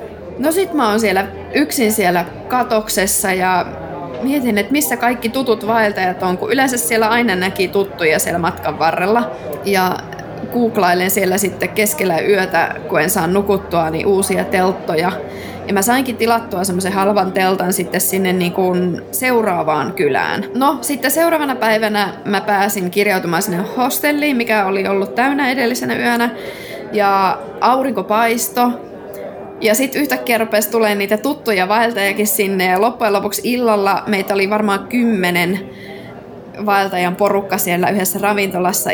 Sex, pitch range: female, 185-230 Hz